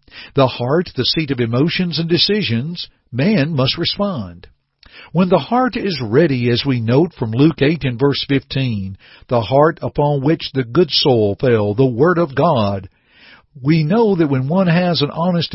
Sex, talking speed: male, 175 wpm